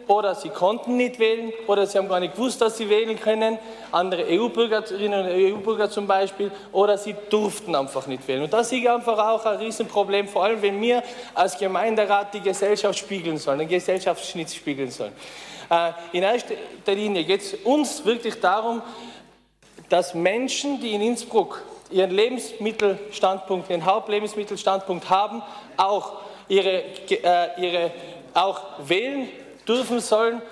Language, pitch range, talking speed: German, 190-225 Hz, 140 wpm